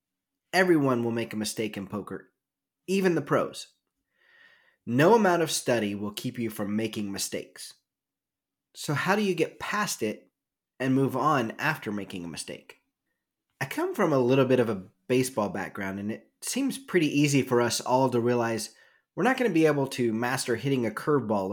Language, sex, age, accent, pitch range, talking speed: English, male, 30-49, American, 105-160 Hz, 180 wpm